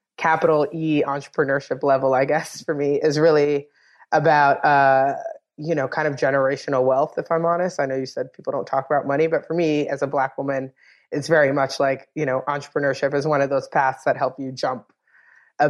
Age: 20-39